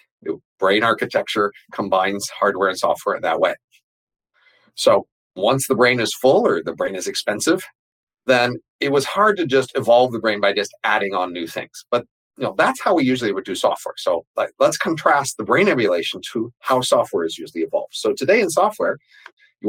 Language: English